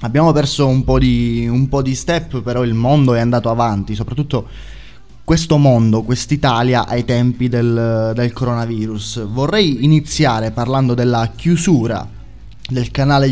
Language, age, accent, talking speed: Italian, 20-39, native, 140 wpm